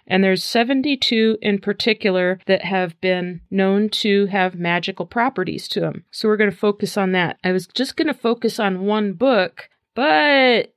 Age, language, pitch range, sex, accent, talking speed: 40-59, English, 185-220 Hz, female, American, 180 wpm